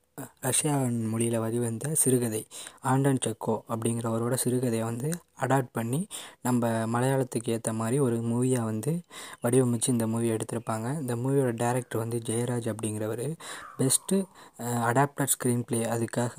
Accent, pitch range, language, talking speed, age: native, 115-135 Hz, Tamil, 130 wpm, 20-39